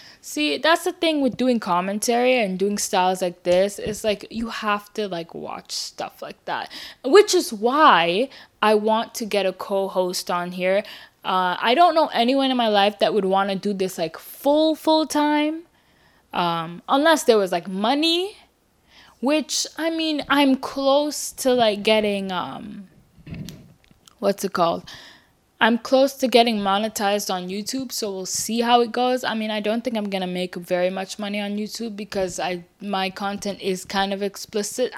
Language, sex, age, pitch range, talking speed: English, female, 10-29, 195-265 Hz, 180 wpm